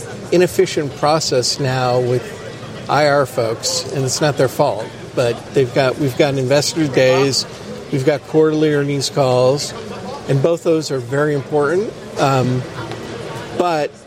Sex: male